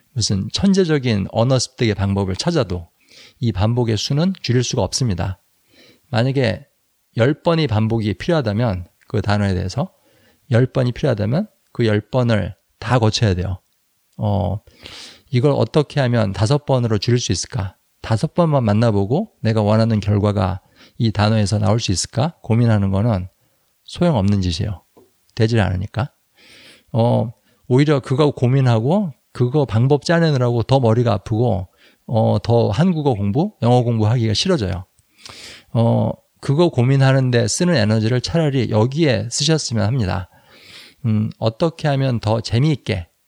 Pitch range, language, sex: 105-135 Hz, Korean, male